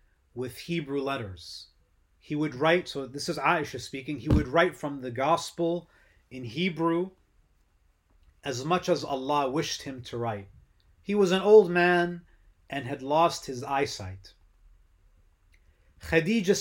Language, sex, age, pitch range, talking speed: English, male, 30-49, 100-170 Hz, 135 wpm